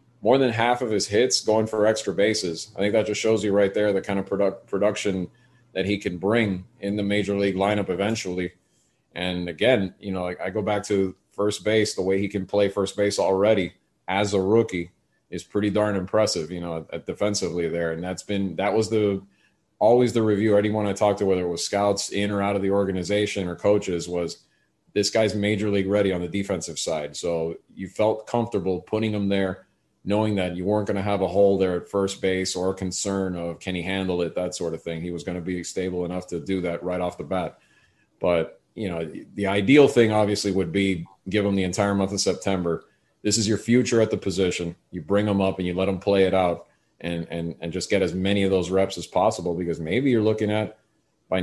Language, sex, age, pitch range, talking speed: English, male, 30-49, 90-105 Hz, 225 wpm